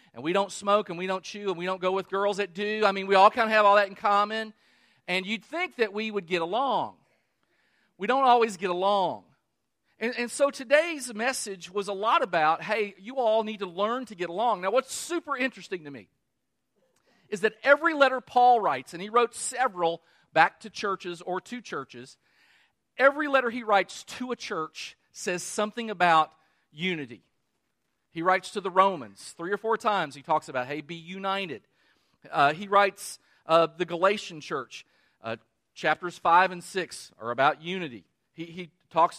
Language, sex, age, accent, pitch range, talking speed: English, male, 40-59, American, 165-215 Hz, 190 wpm